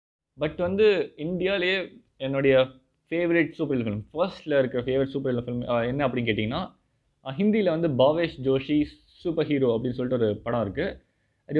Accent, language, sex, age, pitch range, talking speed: native, Tamil, male, 20-39, 130-170 Hz, 150 wpm